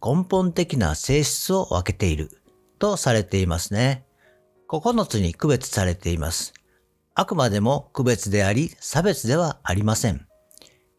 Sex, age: male, 50-69